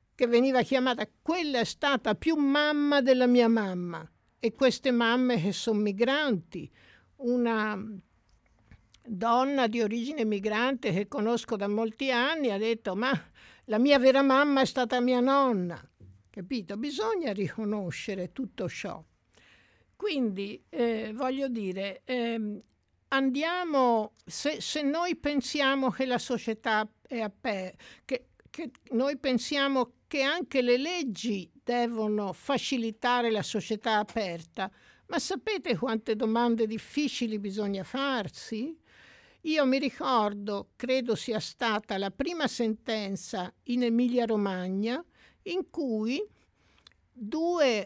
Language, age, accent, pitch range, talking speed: Italian, 60-79, native, 215-265 Hz, 120 wpm